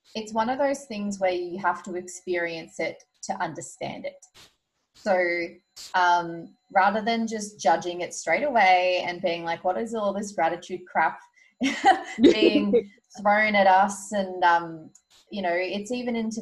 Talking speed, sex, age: 155 wpm, female, 20-39